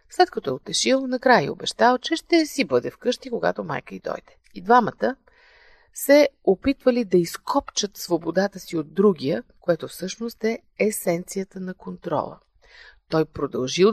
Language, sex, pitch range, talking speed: Bulgarian, female, 170-235 Hz, 140 wpm